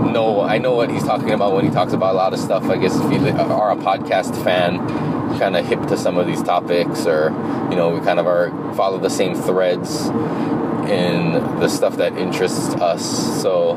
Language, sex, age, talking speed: English, male, 20-39, 215 wpm